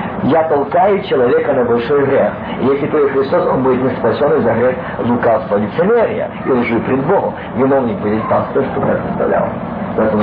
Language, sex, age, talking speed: Russian, male, 50-69, 170 wpm